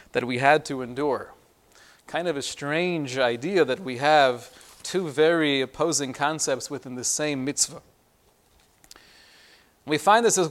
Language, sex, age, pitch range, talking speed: English, male, 30-49, 140-180 Hz, 145 wpm